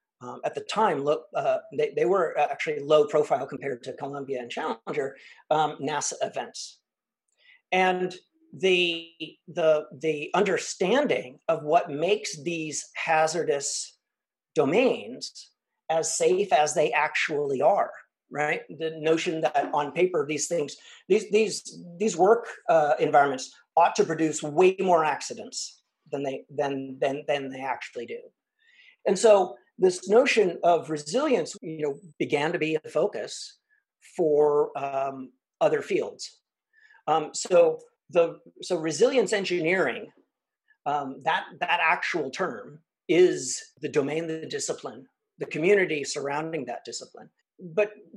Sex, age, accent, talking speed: male, 40-59, American, 130 wpm